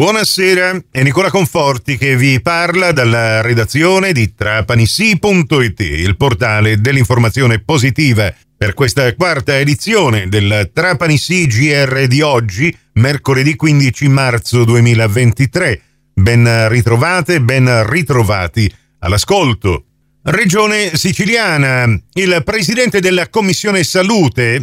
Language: Italian